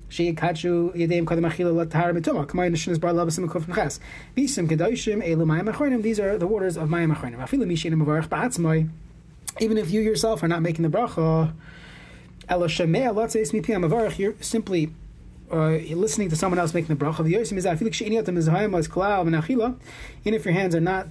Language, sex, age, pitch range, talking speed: English, male, 20-39, 160-210 Hz, 90 wpm